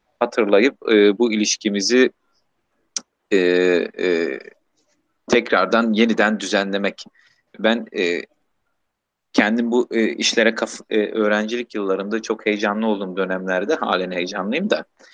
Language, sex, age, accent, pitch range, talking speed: Turkish, male, 40-59, native, 95-120 Hz, 105 wpm